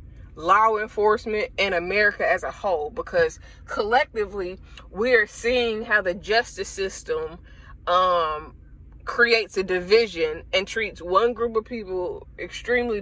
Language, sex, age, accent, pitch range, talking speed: English, female, 20-39, American, 180-235 Hz, 120 wpm